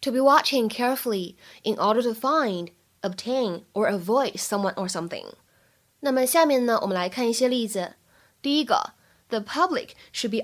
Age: 10-29